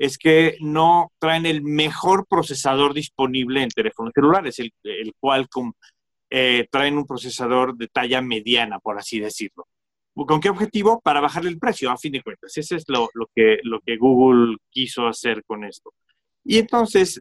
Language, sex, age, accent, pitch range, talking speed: Spanish, male, 40-59, Mexican, 120-155 Hz, 175 wpm